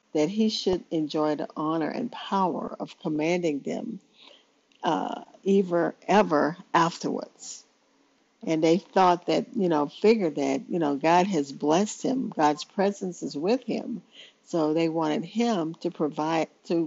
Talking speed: 145 wpm